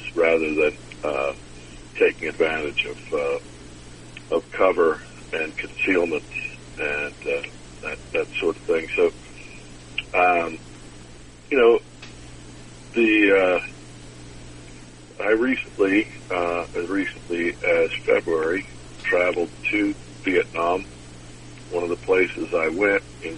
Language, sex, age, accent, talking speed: English, male, 60-79, American, 105 wpm